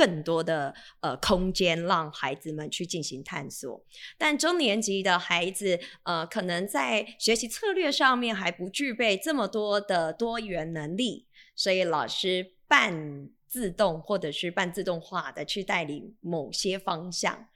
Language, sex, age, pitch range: Chinese, female, 20-39, 175-240 Hz